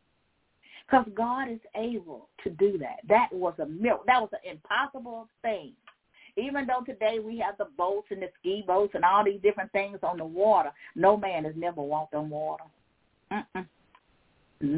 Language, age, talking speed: English, 40-59, 175 wpm